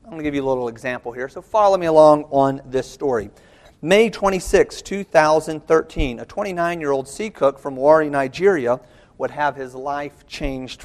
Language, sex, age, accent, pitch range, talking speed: English, male, 40-59, American, 130-160 Hz, 170 wpm